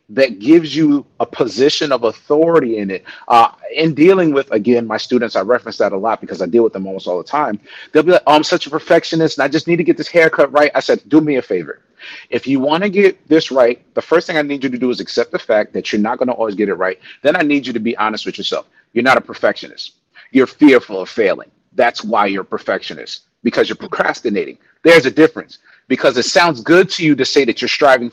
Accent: American